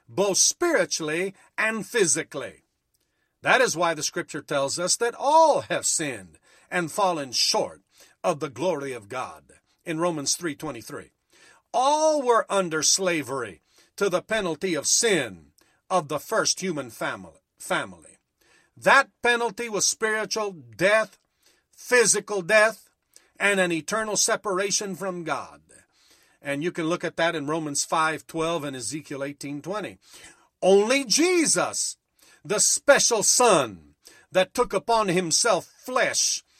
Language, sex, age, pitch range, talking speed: English, male, 50-69, 160-220 Hz, 130 wpm